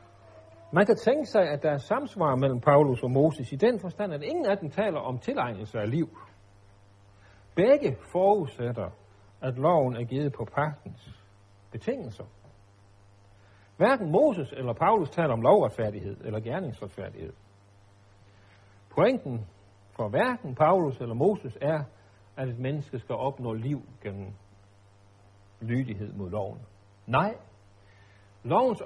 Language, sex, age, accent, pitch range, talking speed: Danish, male, 60-79, native, 100-155 Hz, 125 wpm